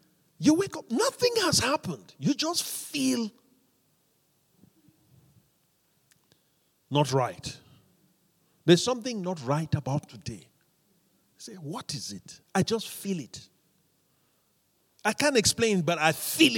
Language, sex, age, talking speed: English, male, 50-69, 110 wpm